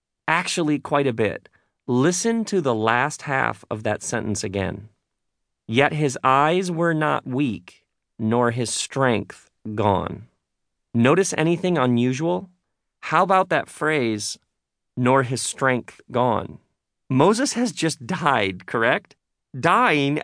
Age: 40-59